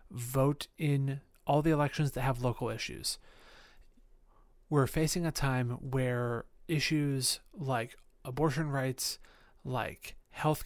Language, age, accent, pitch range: English, 30-49, American, 125-145 Hz